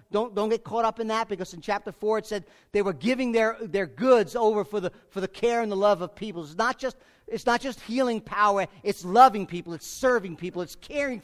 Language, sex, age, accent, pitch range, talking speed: English, male, 50-69, American, 180-235 Hz, 245 wpm